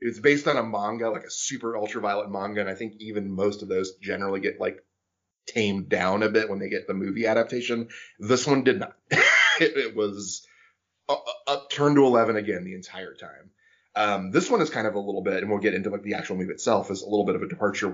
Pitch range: 95-115 Hz